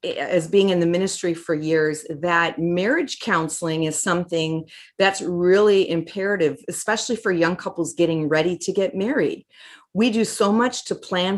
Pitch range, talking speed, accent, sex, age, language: 165-215 Hz, 160 wpm, American, female, 40-59, English